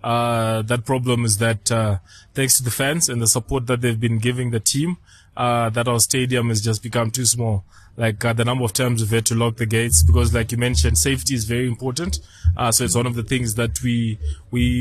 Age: 20-39